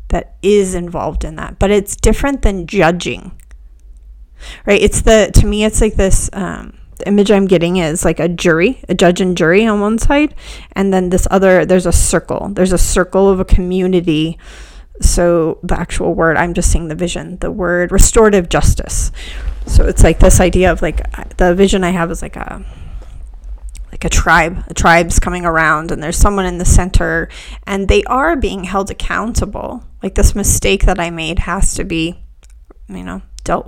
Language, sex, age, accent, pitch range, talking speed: English, female, 30-49, American, 145-195 Hz, 185 wpm